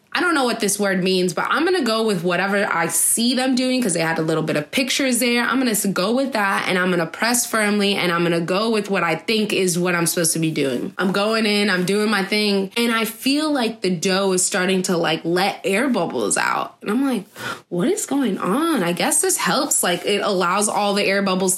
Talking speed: 260 wpm